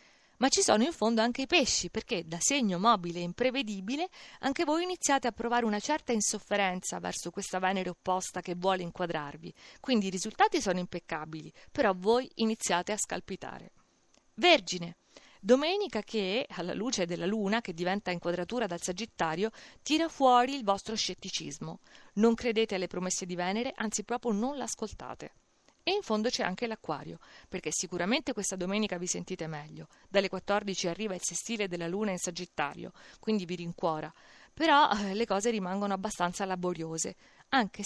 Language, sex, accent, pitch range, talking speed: Italian, female, native, 180-240 Hz, 155 wpm